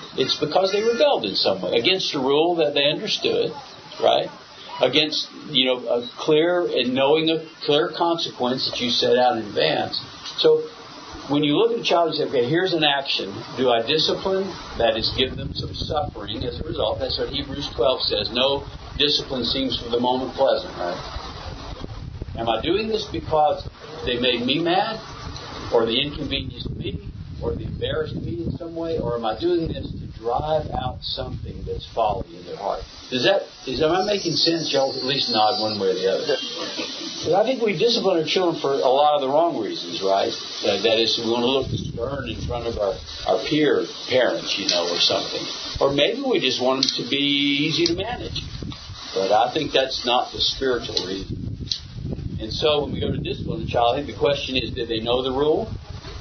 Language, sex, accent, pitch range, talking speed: English, male, American, 120-165 Hz, 200 wpm